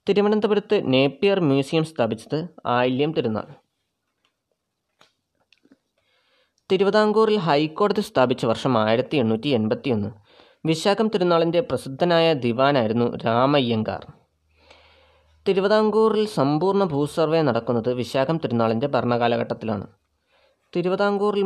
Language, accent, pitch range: Malayalam, native, 120-175 Hz